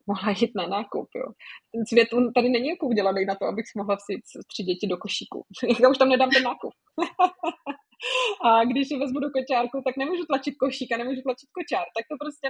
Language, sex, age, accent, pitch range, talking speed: Czech, female, 20-39, native, 205-265 Hz, 205 wpm